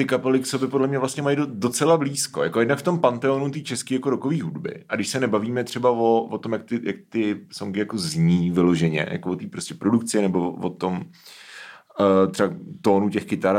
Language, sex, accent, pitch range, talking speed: Czech, male, native, 95-115 Hz, 210 wpm